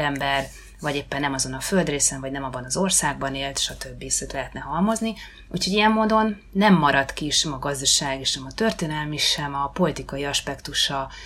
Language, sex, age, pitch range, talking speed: Hungarian, female, 30-49, 140-165 Hz, 175 wpm